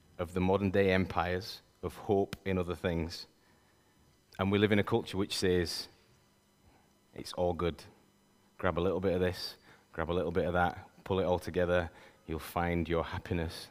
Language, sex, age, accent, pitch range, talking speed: English, male, 20-39, British, 90-110 Hz, 180 wpm